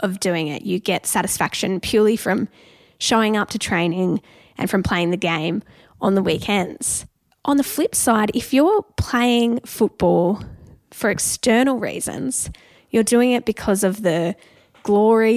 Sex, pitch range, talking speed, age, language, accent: female, 190-235 Hz, 150 wpm, 10-29, English, Australian